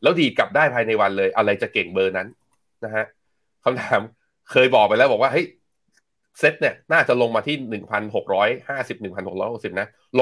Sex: male